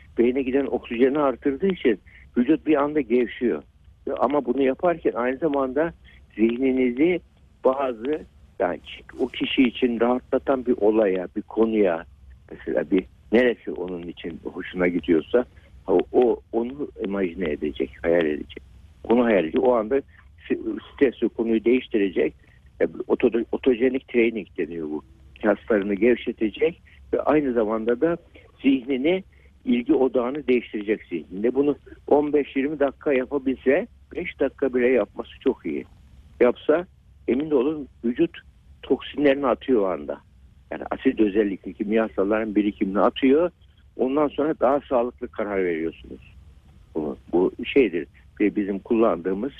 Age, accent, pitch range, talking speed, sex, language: 60-79, native, 105-140 Hz, 115 wpm, male, Turkish